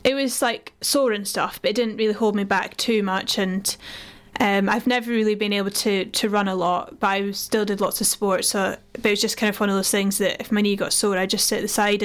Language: English